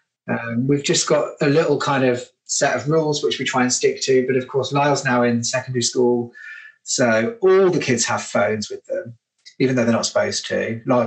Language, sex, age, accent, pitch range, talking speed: English, male, 30-49, British, 120-150 Hz, 215 wpm